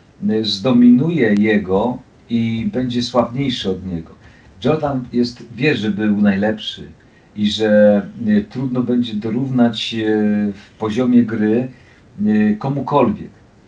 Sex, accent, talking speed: male, native, 95 wpm